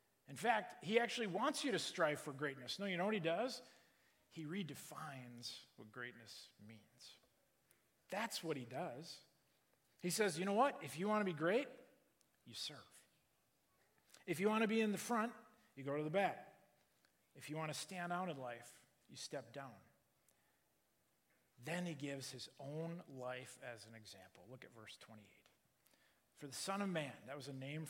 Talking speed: 180 wpm